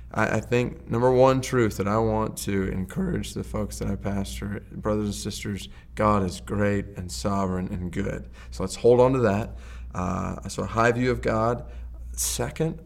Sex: male